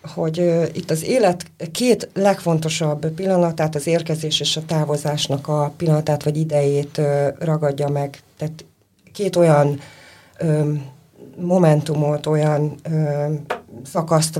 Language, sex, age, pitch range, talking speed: Hungarian, female, 30-49, 150-175 Hz, 100 wpm